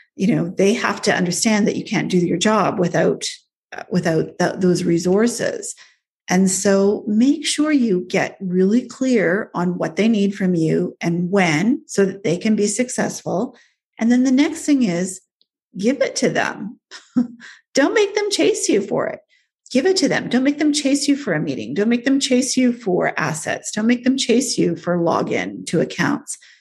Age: 40-59